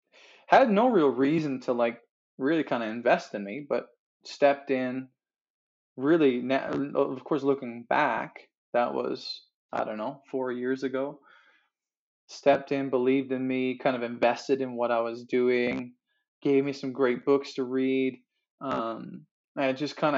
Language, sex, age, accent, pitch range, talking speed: English, male, 20-39, American, 125-140 Hz, 160 wpm